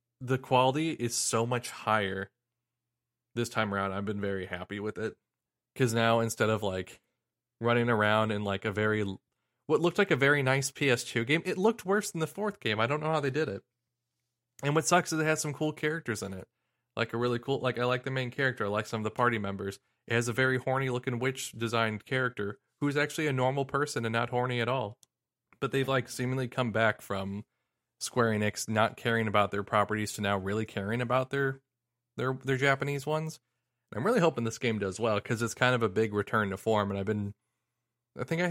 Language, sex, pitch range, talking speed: English, male, 110-130 Hz, 220 wpm